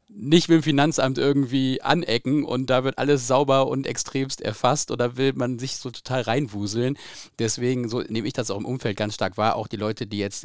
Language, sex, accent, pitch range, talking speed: German, male, German, 105-130 Hz, 210 wpm